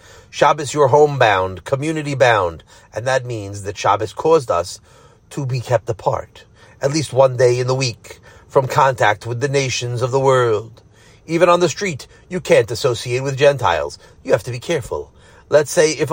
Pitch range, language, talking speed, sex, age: 120-190 Hz, English, 175 wpm, male, 40-59